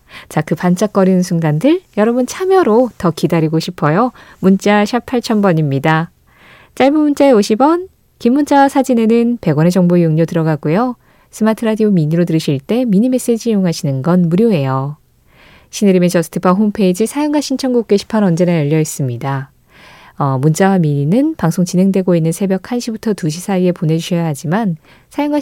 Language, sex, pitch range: Korean, female, 160-230 Hz